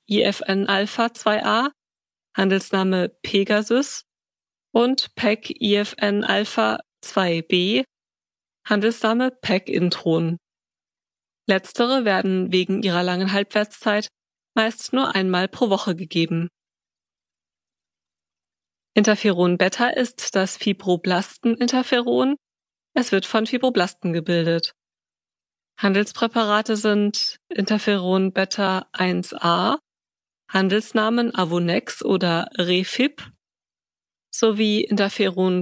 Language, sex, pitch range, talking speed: German, female, 170-225 Hz, 75 wpm